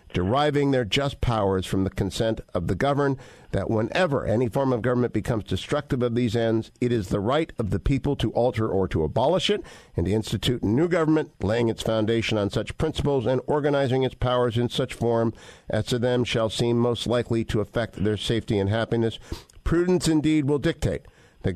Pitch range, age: 110-145 Hz, 50-69